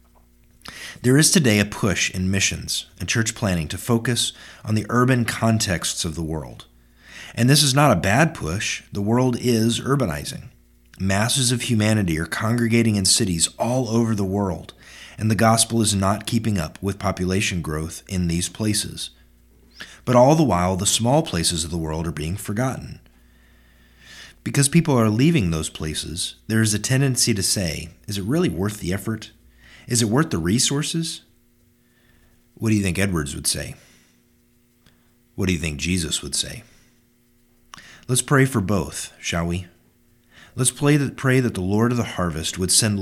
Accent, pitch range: American, 85-120 Hz